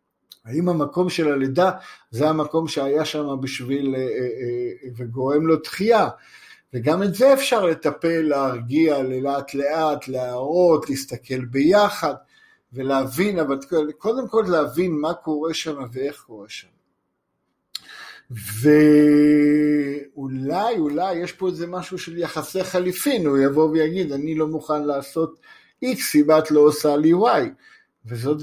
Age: 50-69